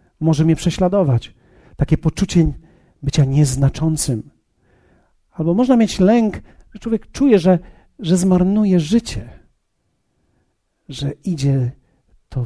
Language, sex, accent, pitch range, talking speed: Polish, male, native, 130-200 Hz, 100 wpm